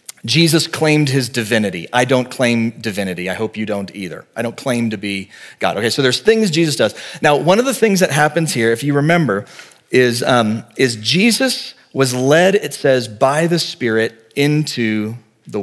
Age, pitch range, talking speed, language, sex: 40-59, 110-145 Hz, 190 wpm, English, male